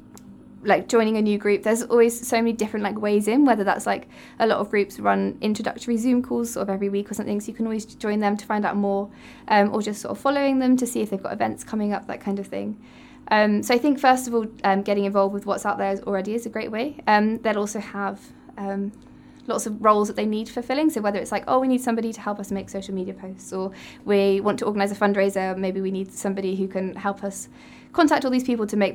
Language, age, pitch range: English, 20-39, 200-235 Hz